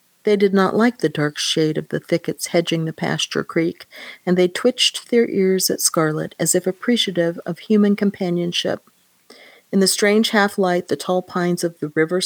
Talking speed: 180 wpm